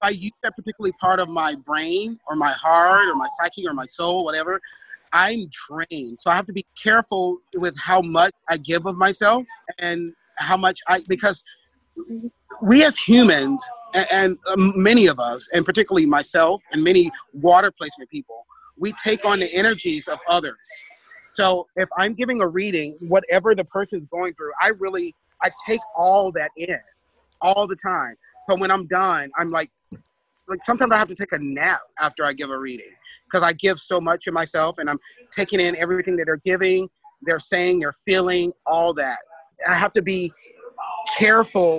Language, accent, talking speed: English, American, 180 wpm